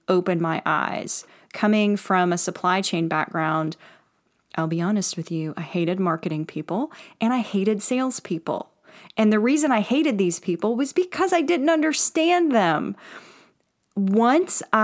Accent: American